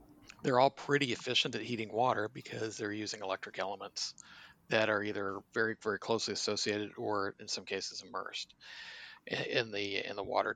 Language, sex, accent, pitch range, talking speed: English, male, American, 110-140 Hz, 160 wpm